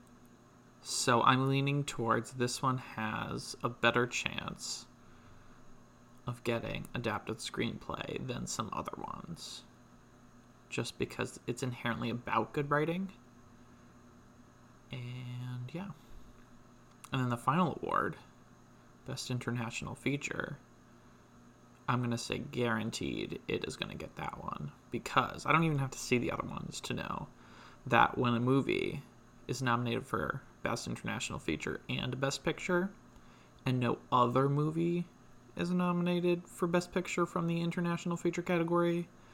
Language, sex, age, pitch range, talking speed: English, male, 20-39, 120-170 Hz, 130 wpm